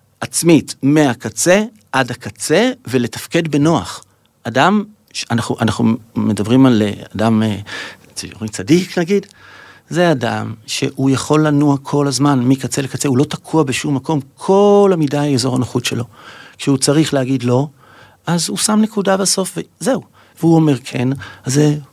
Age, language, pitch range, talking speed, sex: 50-69, Hebrew, 120-160 Hz, 130 wpm, male